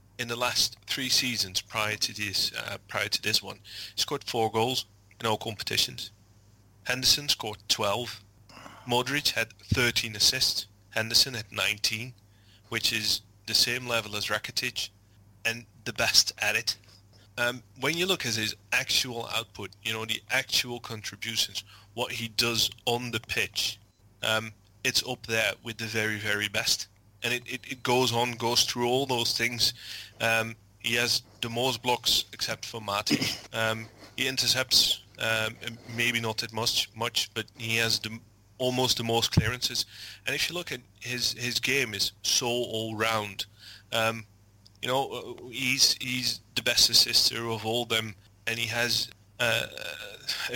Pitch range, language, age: 105-120 Hz, English, 30-49